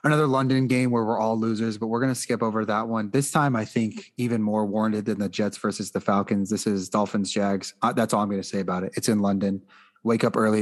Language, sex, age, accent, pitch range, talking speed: English, male, 30-49, American, 110-125 Hz, 255 wpm